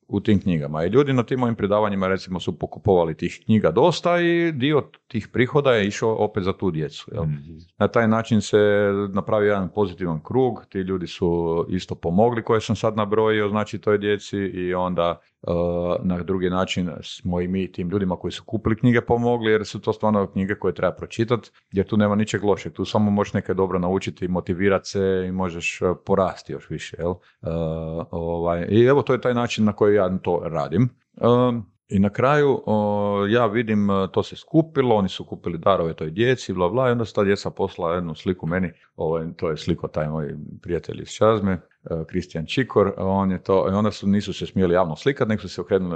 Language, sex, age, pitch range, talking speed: Croatian, male, 40-59, 90-110 Hz, 205 wpm